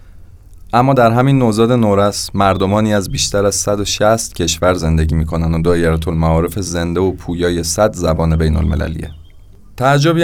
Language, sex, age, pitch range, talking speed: Persian, male, 30-49, 85-100 Hz, 135 wpm